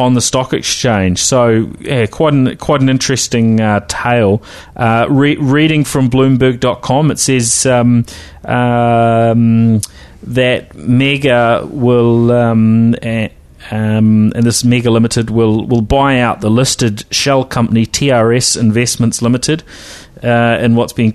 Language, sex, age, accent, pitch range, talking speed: English, male, 30-49, Australian, 105-120 Hz, 120 wpm